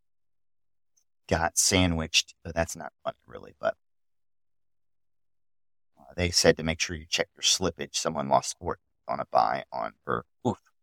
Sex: male